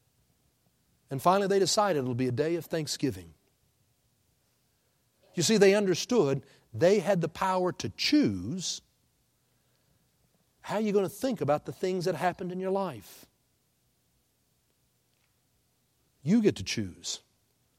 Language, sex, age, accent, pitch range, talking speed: English, male, 60-79, American, 125-185 Hz, 125 wpm